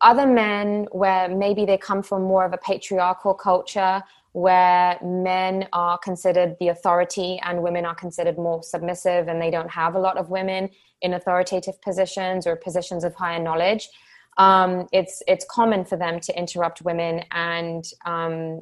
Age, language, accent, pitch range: 20-39, English, British, 175-200 Hz